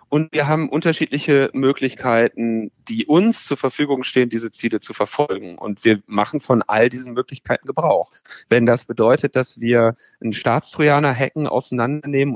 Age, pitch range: 30-49, 115-140 Hz